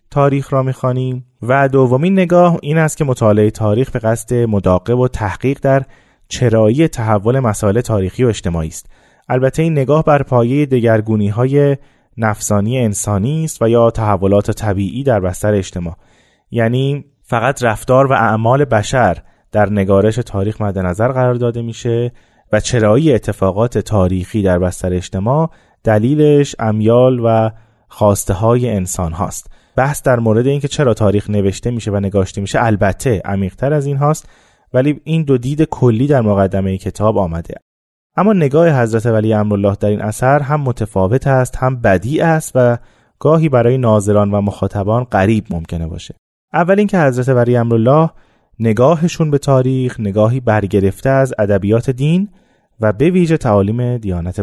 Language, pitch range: Persian, 105-135 Hz